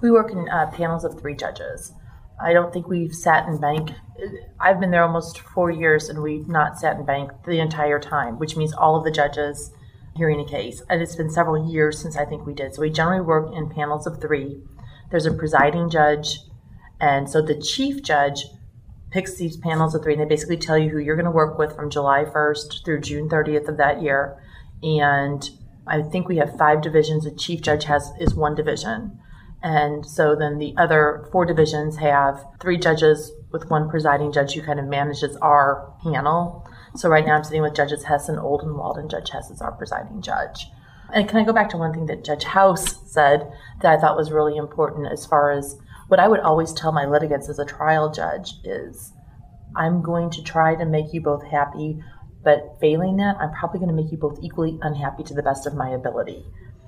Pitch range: 145-160 Hz